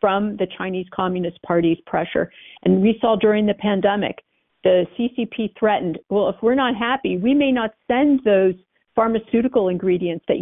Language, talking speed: English, 160 wpm